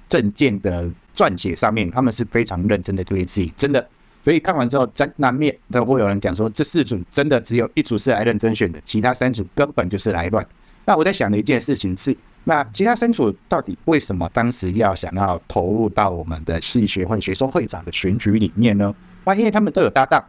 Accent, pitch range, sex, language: native, 100-135 Hz, male, Chinese